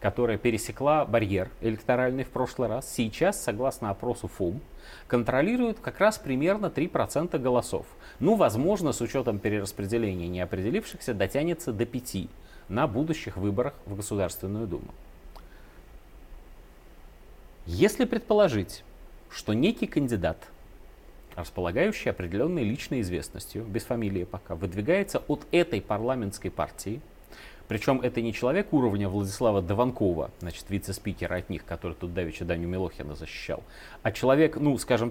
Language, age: Russian, 30-49